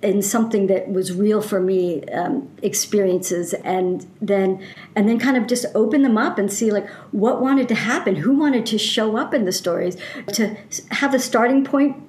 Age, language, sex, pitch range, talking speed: 50-69, English, male, 190-235 Hz, 195 wpm